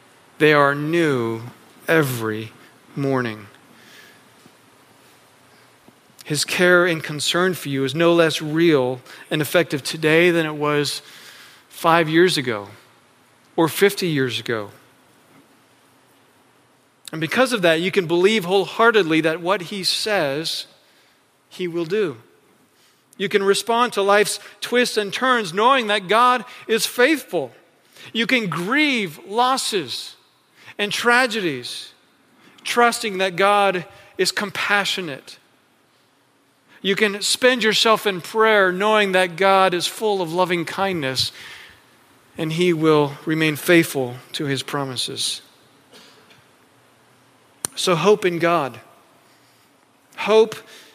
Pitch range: 145-205 Hz